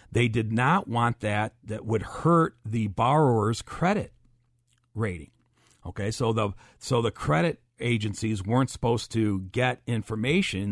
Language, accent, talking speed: English, American, 135 wpm